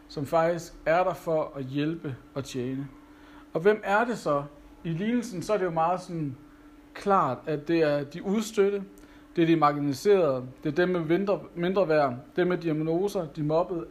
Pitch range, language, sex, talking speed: 150-195 Hz, Danish, male, 190 wpm